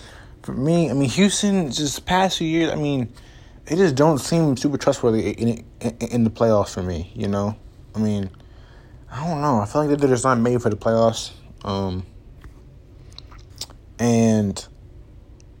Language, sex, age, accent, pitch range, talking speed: English, male, 20-39, American, 105-120 Hz, 170 wpm